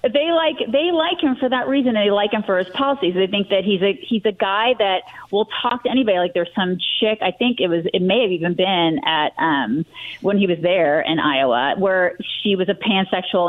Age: 30-49